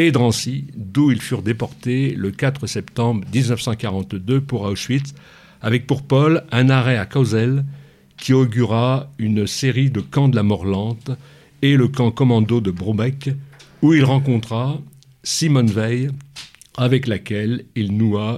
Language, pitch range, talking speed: French, 110-130 Hz, 140 wpm